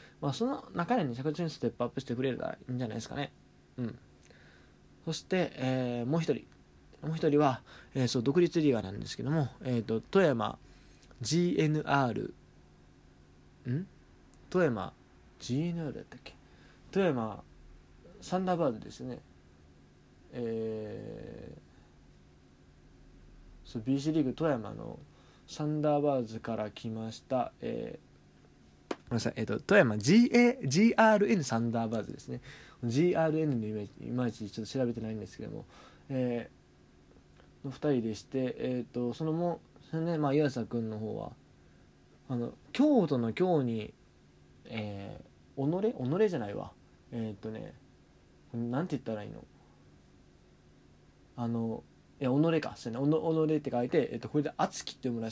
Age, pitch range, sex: 20-39, 95-150 Hz, male